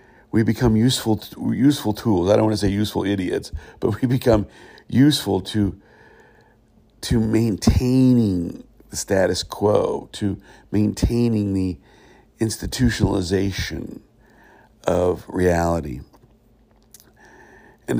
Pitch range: 95-115 Hz